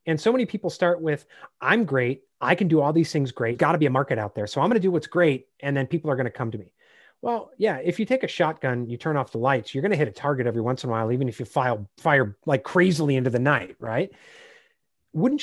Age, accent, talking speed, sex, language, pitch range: 30-49, American, 285 wpm, male, English, 130-180 Hz